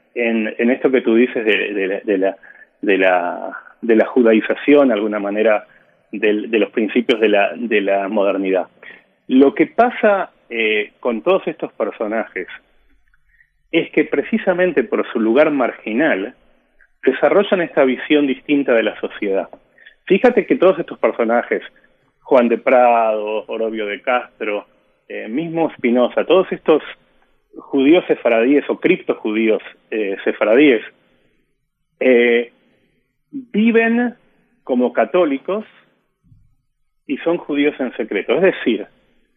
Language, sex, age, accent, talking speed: Spanish, male, 30-49, Argentinian, 125 wpm